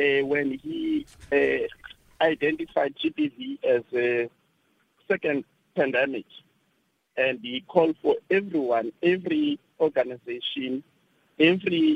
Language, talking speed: English, 90 wpm